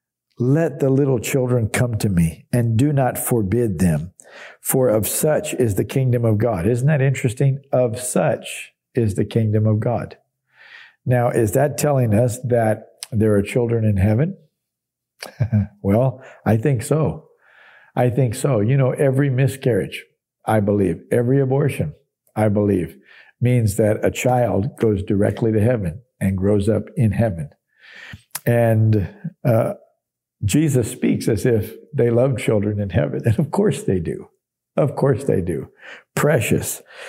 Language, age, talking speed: English, 60-79, 150 wpm